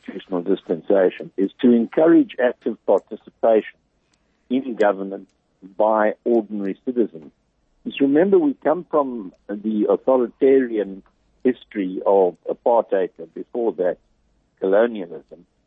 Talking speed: 100 wpm